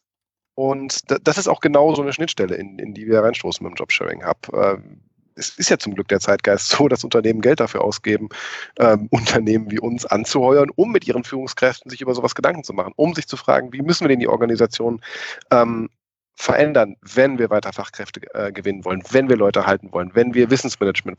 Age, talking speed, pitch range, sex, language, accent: 40-59, 195 wpm, 115-145 Hz, male, German, German